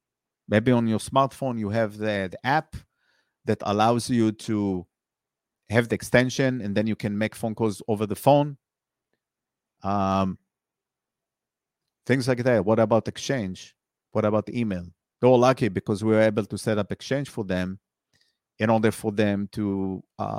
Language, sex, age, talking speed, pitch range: English, male, 50-69, 160 wpm, 95-115 Hz